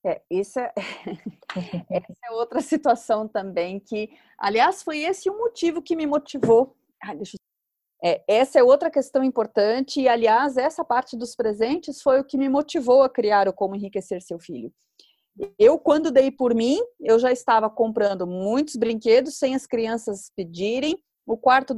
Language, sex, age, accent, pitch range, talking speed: Portuguese, female, 30-49, Brazilian, 210-280 Hz, 170 wpm